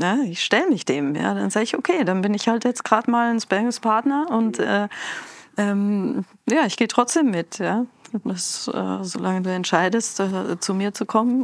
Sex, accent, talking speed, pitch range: female, German, 200 wpm, 185-225 Hz